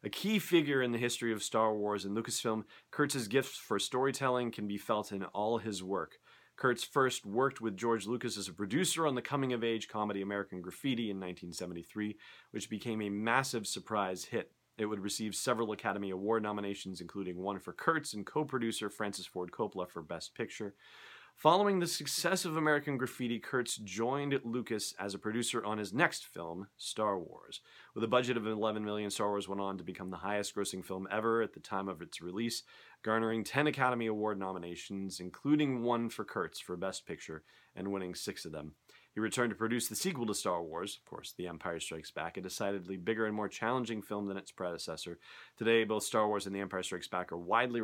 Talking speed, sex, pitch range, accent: 195 wpm, male, 95-115 Hz, American